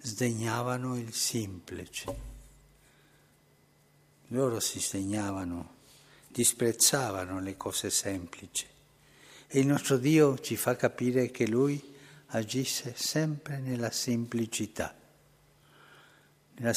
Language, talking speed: Italian, 85 wpm